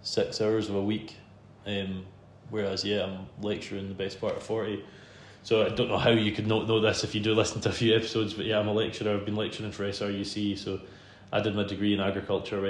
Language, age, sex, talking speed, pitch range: English, 20-39, male, 235 wpm, 100-110 Hz